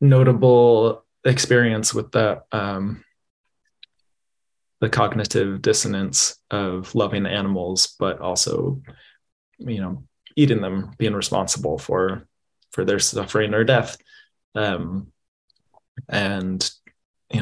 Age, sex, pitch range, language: 20-39, male, 100-120 Hz, English